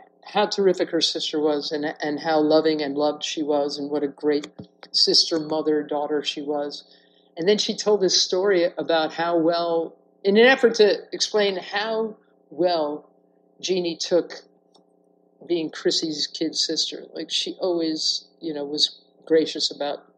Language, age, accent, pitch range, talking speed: English, 50-69, American, 150-200 Hz, 155 wpm